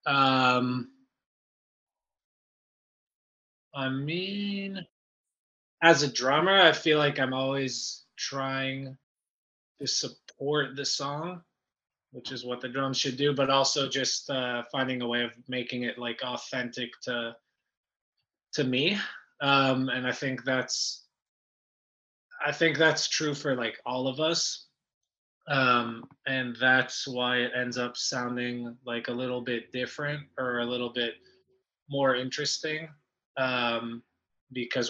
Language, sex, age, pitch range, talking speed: English, male, 20-39, 120-140 Hz, 125 wpm